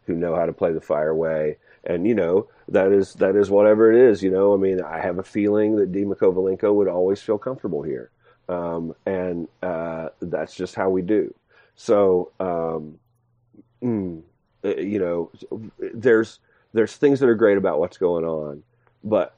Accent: American